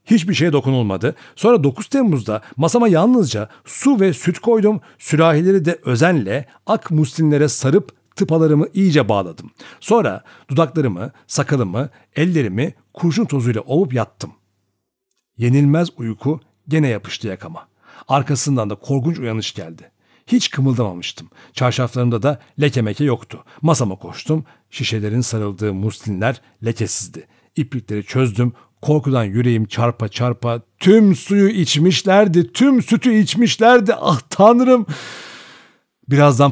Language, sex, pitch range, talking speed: Turkish, male, 115-165 Hz, 110 wpm